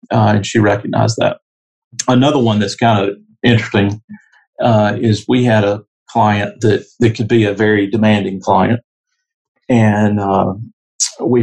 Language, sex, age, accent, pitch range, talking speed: English, male, 50-69, American, 105-120 Hz, 140 wpm